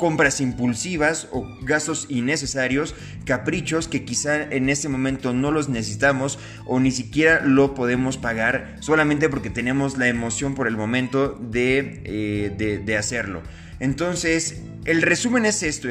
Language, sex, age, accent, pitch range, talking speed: Spanish, male, 30-49, Mexican, 125-150 Hz, 145 wpm